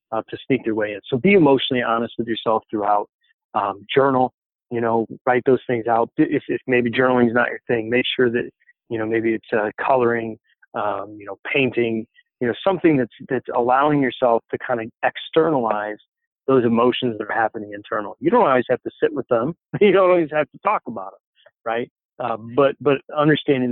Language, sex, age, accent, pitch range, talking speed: English, male, 40-59, American, 115-150 Hz, 200 wpm